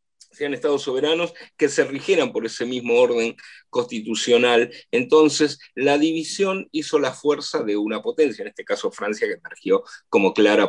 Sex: male